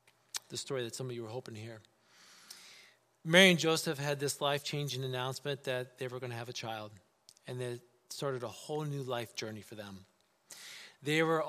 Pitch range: 145-190 Hz